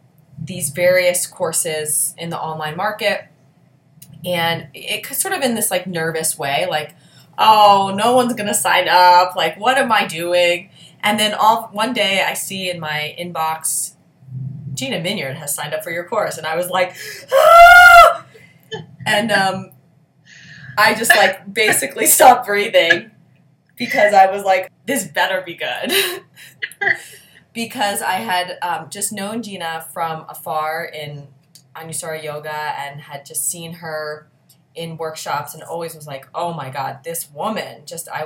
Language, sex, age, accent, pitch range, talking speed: English, female, 20-39, American, 150-195 Hz, 155 wpm